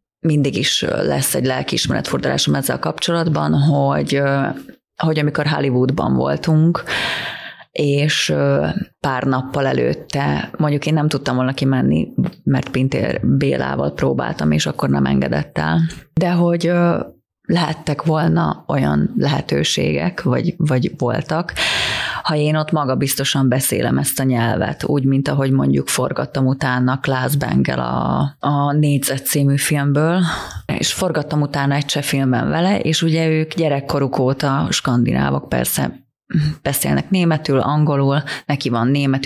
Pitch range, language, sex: 130-160 Hz, Hungarian, female